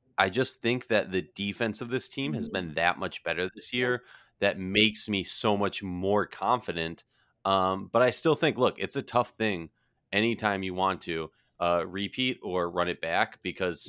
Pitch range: 90-115 Hz